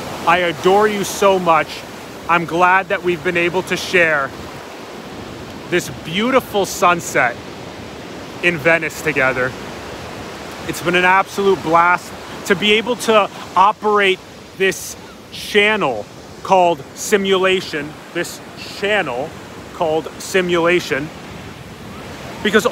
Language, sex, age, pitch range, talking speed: English, male, 30-49, 165-195 Hz, 100 wpm